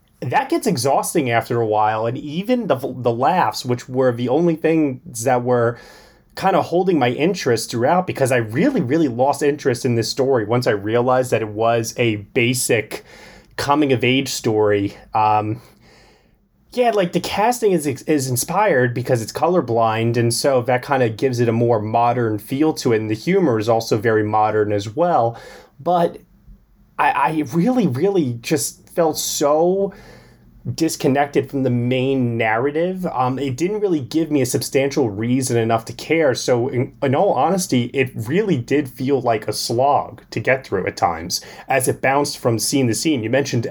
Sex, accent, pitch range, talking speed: male, American, 115-150 Hz, 175 wpm